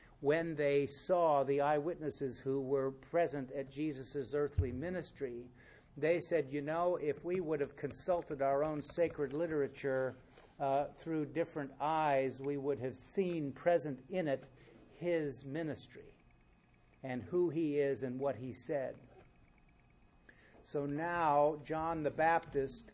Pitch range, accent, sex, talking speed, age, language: 120-150 Hz, American, male, 135 wpm, 50-69, English